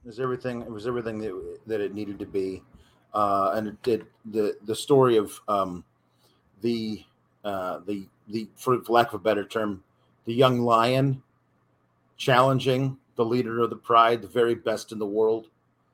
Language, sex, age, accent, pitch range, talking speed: English, male, 40-59, American, 115-150 Hz, 170 wpm